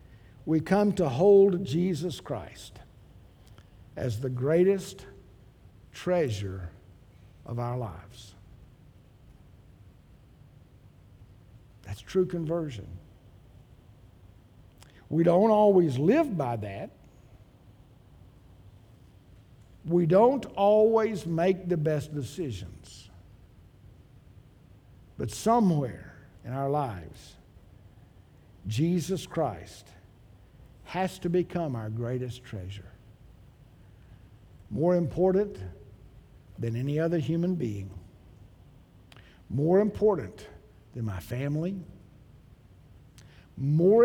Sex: male